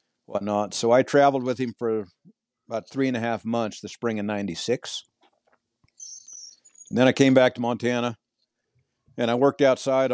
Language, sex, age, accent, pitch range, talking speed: English, male, 50-69, American, 105-120 Hz, 160 wpm